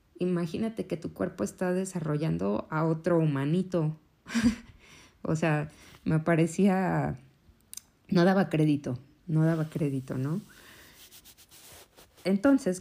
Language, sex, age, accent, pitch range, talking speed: Spanish, female, 20-39, Mexican, 140-180 Hz, 100 wpm